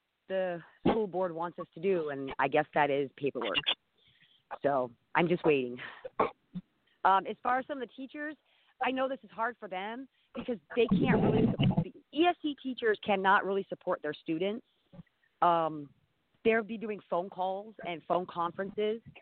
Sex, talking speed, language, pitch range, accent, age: female, 165 wpm, English, 175-220 Hz, American, 40-59